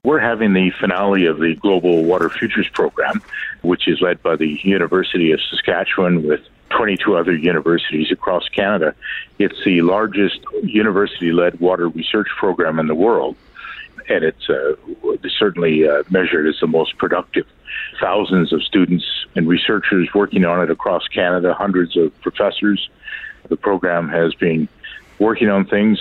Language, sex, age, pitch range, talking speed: English, male, 50-69, 85-100 Hz, 150 wpm